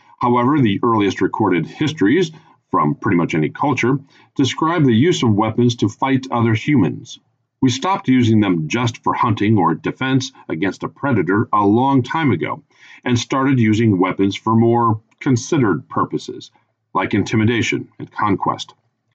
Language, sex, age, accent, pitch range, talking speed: English, male, 40-59, American, 105-130 Hz, 145 wpm